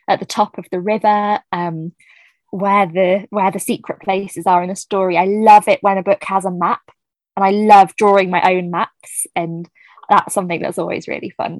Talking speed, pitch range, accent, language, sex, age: 205 wpm, 180-215 Hz, British, English, female, 20-39